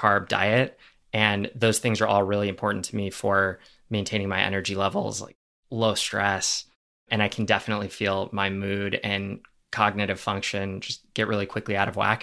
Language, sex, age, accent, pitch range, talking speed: English, male, 20-39, American, 100-110 Hz, 175 wpm